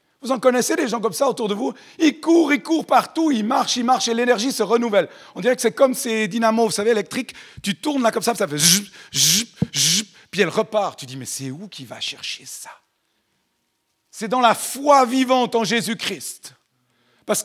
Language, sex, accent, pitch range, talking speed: French, male, French, 155-235 Hz, 215 wpm